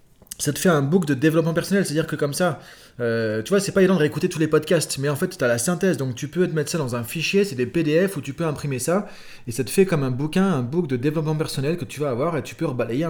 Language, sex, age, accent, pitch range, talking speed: French, male, 30-49, French, 130-175 Hz, 300 wpm